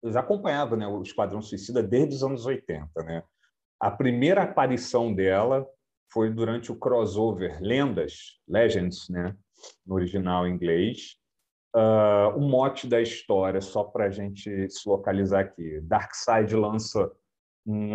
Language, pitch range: Portuguese, 100-140 Hz